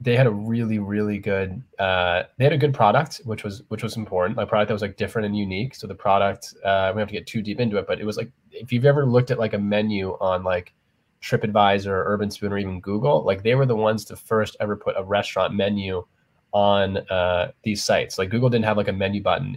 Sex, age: male, 20-39